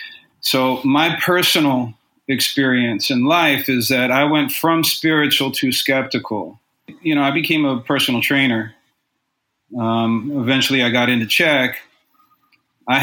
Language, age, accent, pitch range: English, 40-59, American, 120-150 Hz